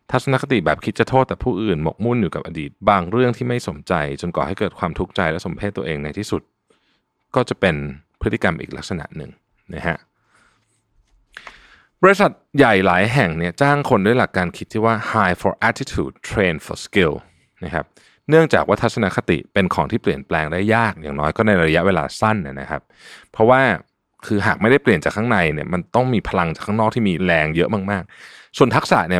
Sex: male